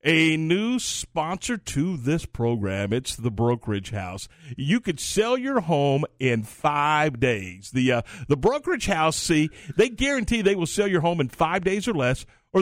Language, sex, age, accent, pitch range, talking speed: English, male, 50-69, American, 125-175 Hz, 175 wpm